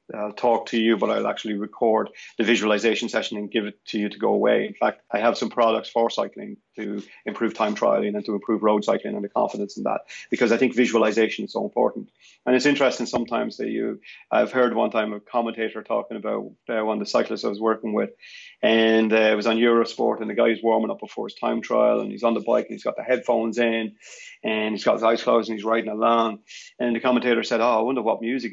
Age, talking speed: 30-49, 245 wpm